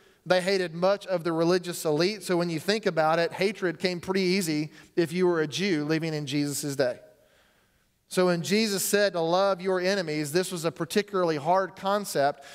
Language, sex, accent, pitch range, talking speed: English, male, American, 165-190 Hz, 190 wpm